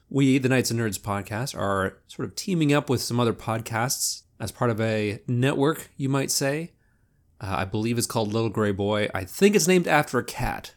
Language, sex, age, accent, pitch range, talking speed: English, male, 30-49, American, 110-135 Hz, 210 wpm